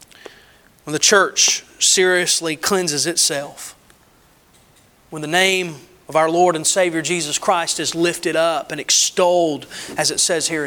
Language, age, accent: English, 30-49, American